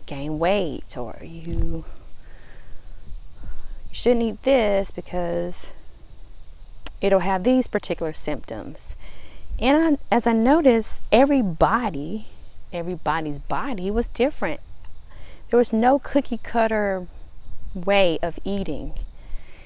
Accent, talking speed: American, 95 wpm